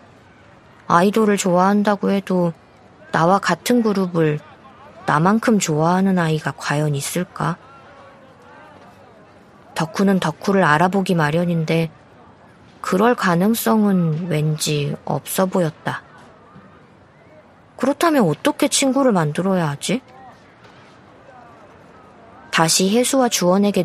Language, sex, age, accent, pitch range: Korean, female, 20-39, native, 165-215 Hz